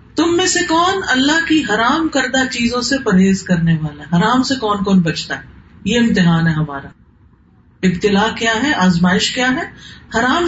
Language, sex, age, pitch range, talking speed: Urdu, female, 40-59, 180-280 Hz, 180 wpm